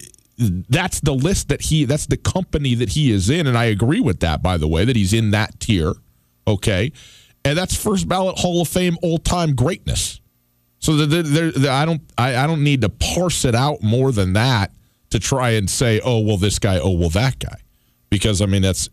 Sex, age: male, 40-59